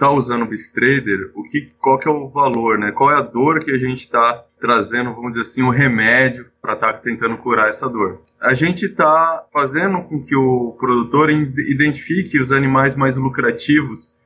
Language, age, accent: Portuguese, 20-39, Brazilian